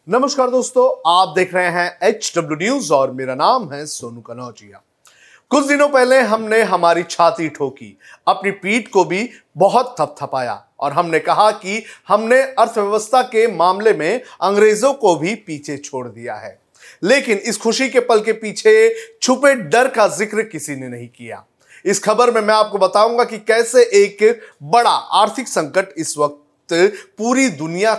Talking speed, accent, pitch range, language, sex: 160 wpm, native, 165-245 Hz, Hindi, male